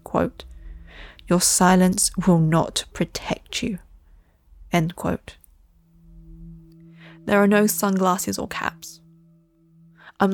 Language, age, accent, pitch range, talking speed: English, 20-39, British, 165-190 Hz, 95 wpm